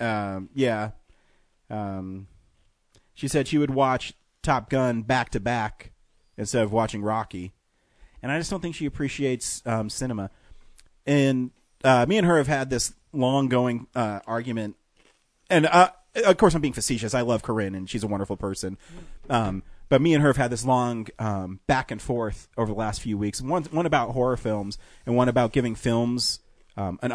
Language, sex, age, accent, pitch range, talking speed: English, male, 30-49, American, 105-140 Hz, 170 wpm